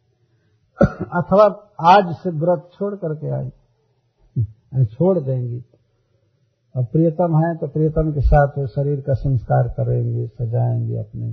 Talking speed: 115 wpm